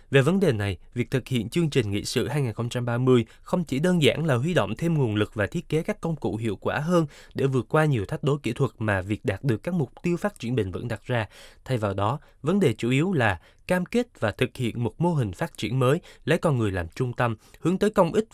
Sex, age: male, 20-39